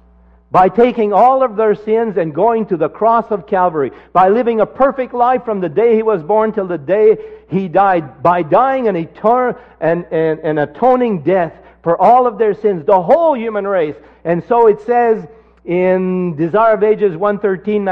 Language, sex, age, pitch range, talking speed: English, male, 60-79, 145-220 Hz, 190 wpm